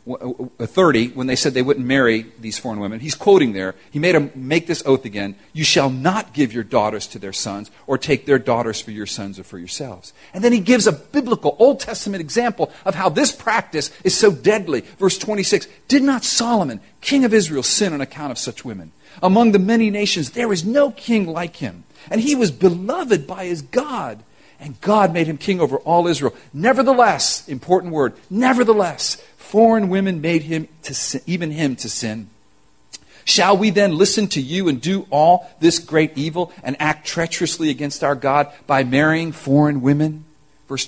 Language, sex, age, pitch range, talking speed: English, male, 50-69, 135-205 Hz, 190 wpm